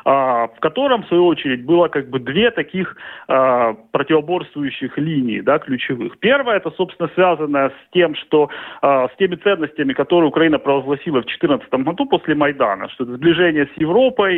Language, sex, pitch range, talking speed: Russian, male, 145-200 Hz, 165 wpm